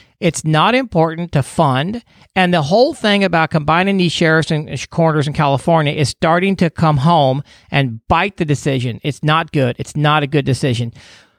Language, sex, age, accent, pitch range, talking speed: English, male, 40-59, American, 145-190 Hz, 180 wpm